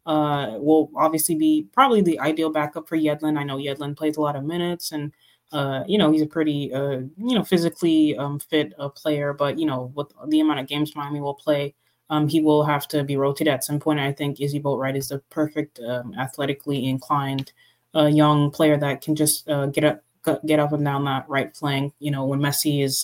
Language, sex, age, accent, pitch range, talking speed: English, female, 20-39, American, 140-155 Hz, 220 wpm